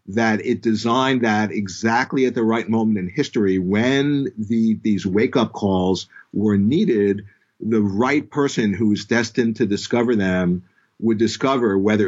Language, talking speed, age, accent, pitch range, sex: English, 150 wpm, 50-69, American, 100-125 Hz, male